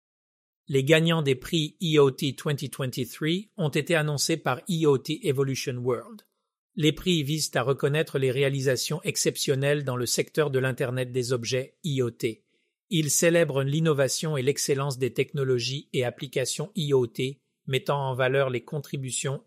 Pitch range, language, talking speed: 130-160 Hz, French, 135 wpm